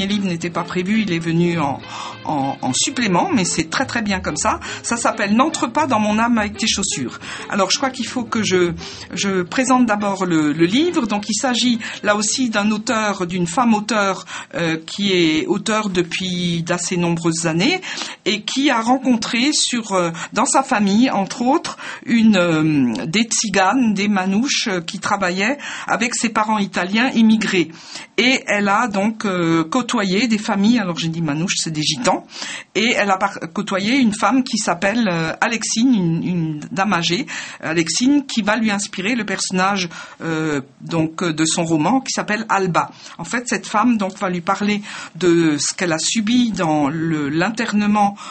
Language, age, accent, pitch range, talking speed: French, 50-69, French, 175-235 Hz, 175 wpm